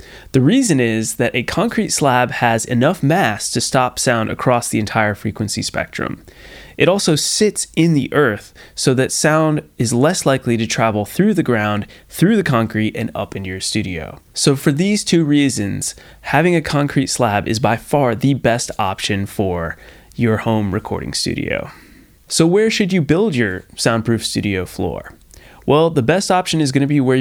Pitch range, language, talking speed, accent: 105-145 Hz, English, 180 wpm, American